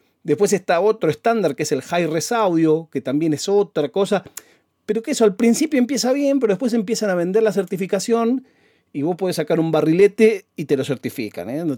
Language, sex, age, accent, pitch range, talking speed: Spanish, male, 40-59, Argentinian, 125-200 Hz, 205 wpm